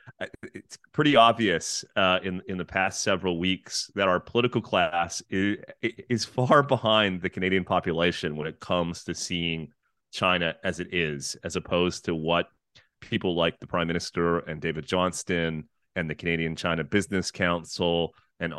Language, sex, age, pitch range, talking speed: English, male, 30-49, 85-110 Hz, 160 wpm